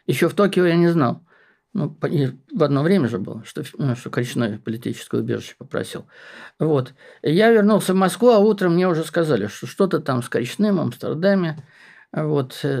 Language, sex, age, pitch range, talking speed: Russian, male, 50-69, 130-185 Hz, 165 wpm